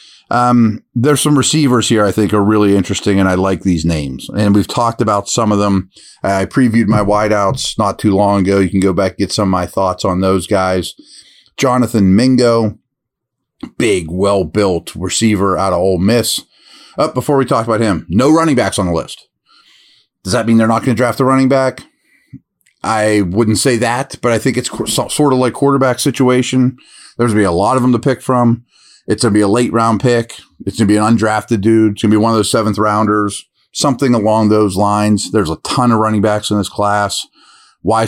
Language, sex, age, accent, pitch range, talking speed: English, male, 40-59, American, 100-120 Hz, 215 wpm